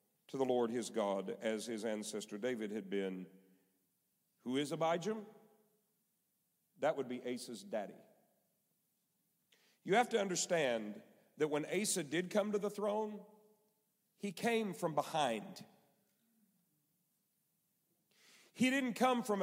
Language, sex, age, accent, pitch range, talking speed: English, male, 40-59, American, 150-210 Hz, 120 wpm